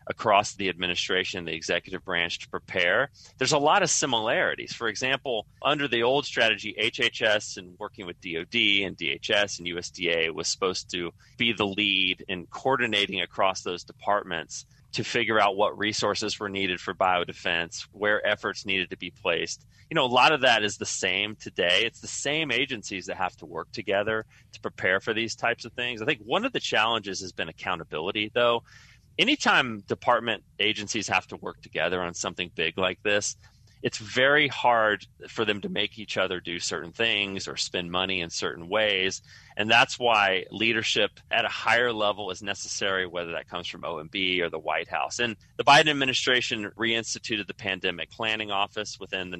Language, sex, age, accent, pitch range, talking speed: English, male, 30-49, American, 90-115 Hz, 180 wpm